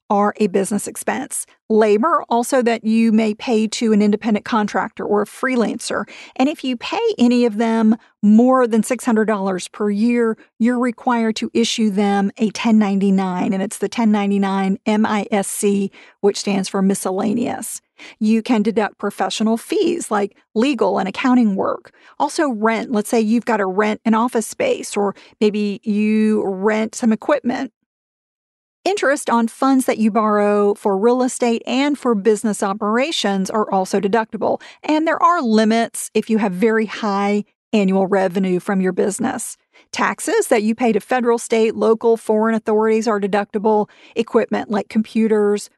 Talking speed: 155 wpm